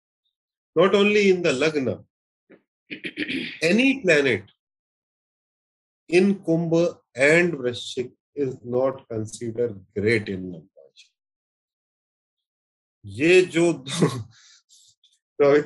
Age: 30-49